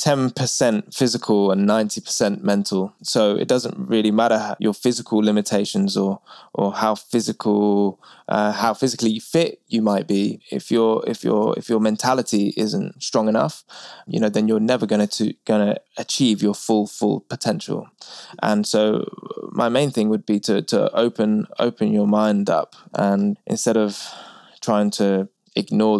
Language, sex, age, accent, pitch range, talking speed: English, male, 20-39, British, 100-110 Hz, 160 wpm